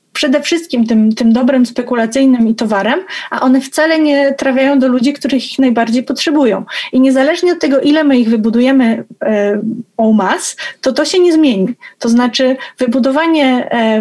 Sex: female